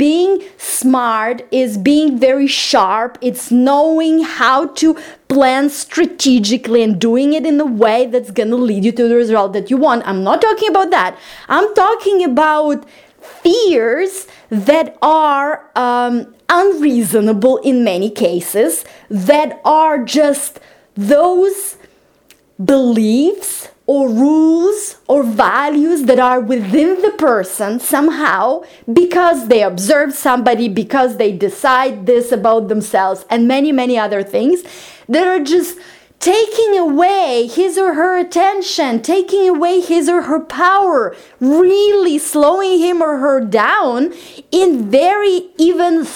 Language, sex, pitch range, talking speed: English, female, 245-350 Hz, 130 wpm